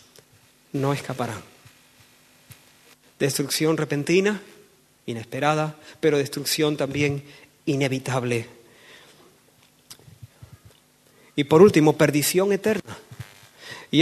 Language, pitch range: Spanish, 155-230 Hz